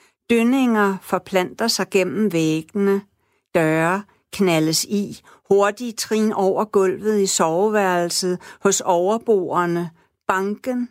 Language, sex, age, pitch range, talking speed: Danish, female, 60-79, 180-210 Hz, 95 wpm